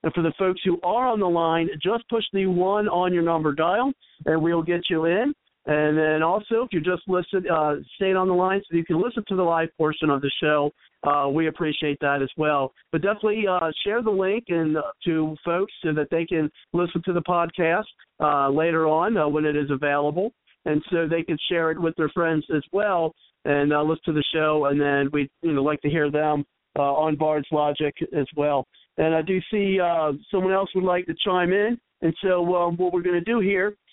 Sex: male